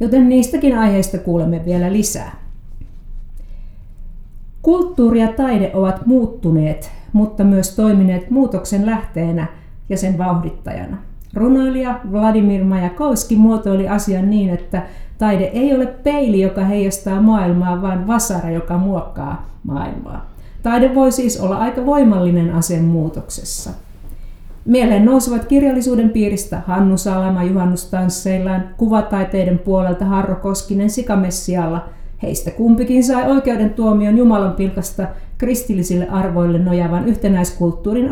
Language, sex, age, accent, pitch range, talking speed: Finnish, female, 50-69, native, 180-225 Hz, 110 wpm